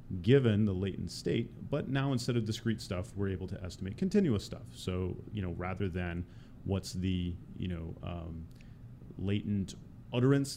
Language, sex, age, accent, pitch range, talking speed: English, male, 30-49, American, 95-120 Hz, 160 wpm